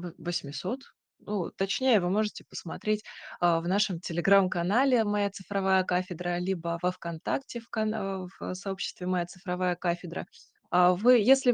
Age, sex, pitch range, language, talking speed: 20-39, female, 185-240 Hz, Russian, 135 wpm